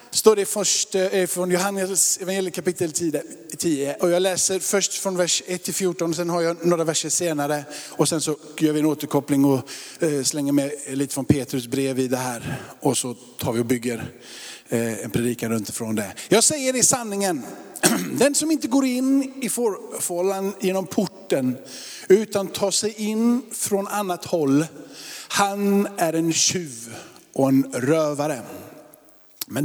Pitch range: 150-205 Hz